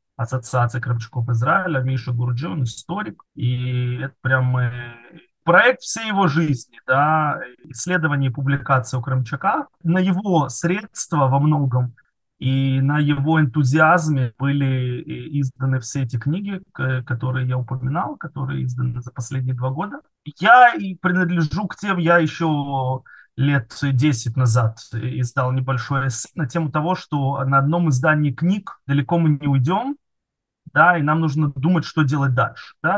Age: 20-39